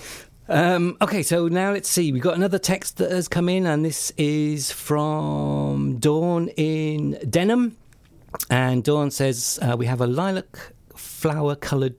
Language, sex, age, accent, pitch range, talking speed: English, male, 50-69, British, 120-160 Hz, 150 wpm